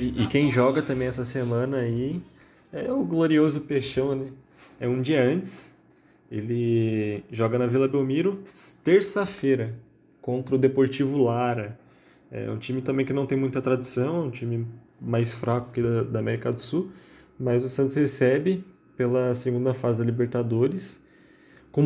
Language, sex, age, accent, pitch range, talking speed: Portuguese, male, 20-39, Brazilian, 115-140 Hz, 155 wpm